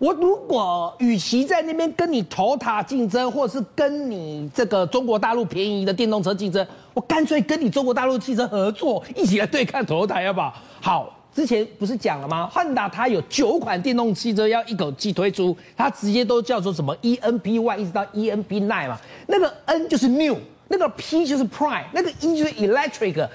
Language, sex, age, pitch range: Chinese, male, 40-59, 200-300 Hz